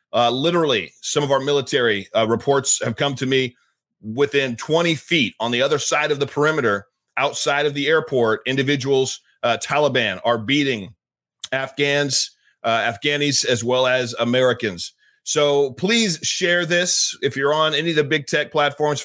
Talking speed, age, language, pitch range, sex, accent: 160 wpm, 30-49, English, 130-155 Hz, male, American